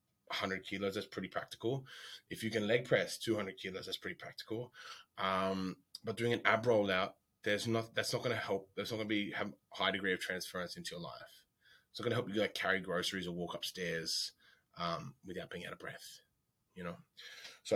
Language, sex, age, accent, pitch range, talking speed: English, male, 20-39, Australian, 90-110 Hz, 215 wpm